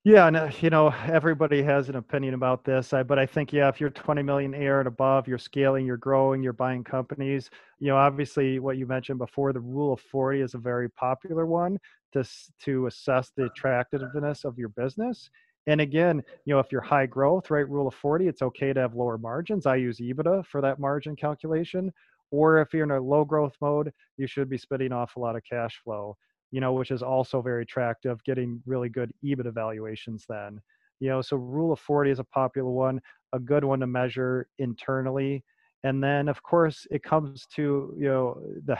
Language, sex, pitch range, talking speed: English, male, 125-145 Hz, 205 wpm